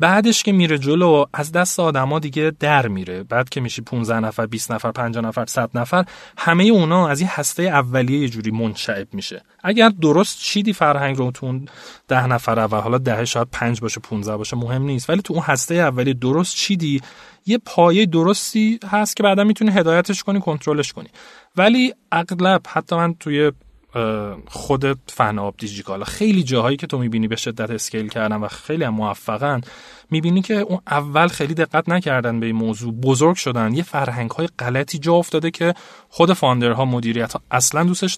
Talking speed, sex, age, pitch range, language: 180 wpm, male, 30-49, 120-170 Hz, Persian